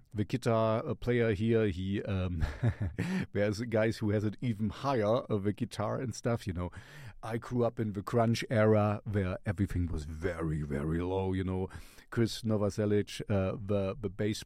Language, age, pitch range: English, 50-69, 100-125 Hz